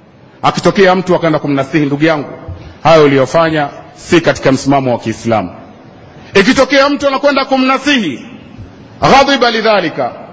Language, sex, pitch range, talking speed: Swahili, male, 160-250 Hz, 115 wpm